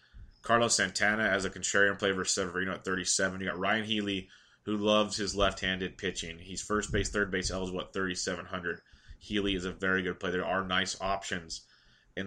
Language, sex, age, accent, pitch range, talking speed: English, male, 20-39, American, 90-100 Hz, 190 wpm